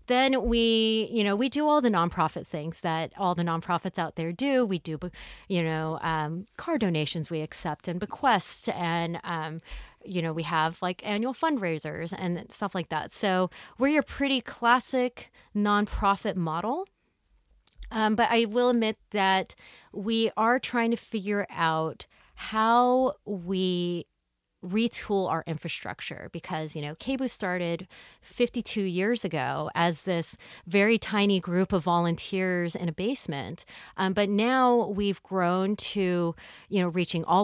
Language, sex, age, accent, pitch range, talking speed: English, female, 30-49, American, 165-225 Hz, 150 wpm